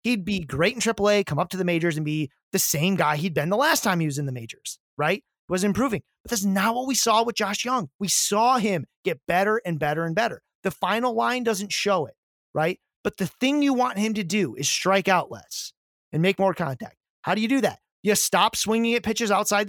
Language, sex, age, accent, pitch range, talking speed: English, male, 30-49, American, 165-220 Hz, 245 wpm